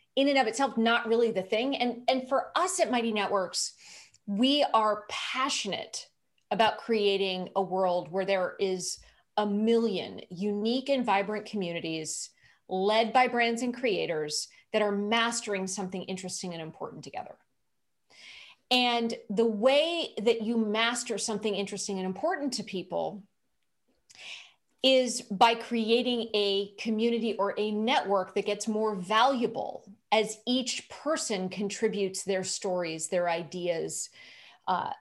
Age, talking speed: 30-49, 130 wpm